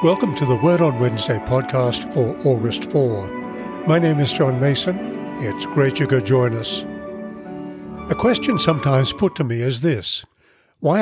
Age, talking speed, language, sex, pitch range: 60-79, 165 wpm, English, male, 125-165 Hz